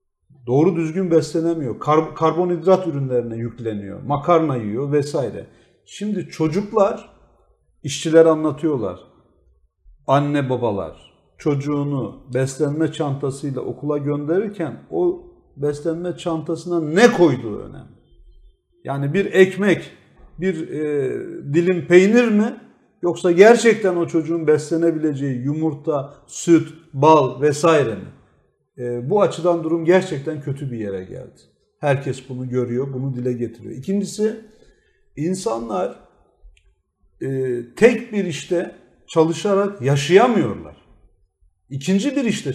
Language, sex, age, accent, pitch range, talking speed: Turkish, male, 50-69, native, 135-190 Hz, 100 wpm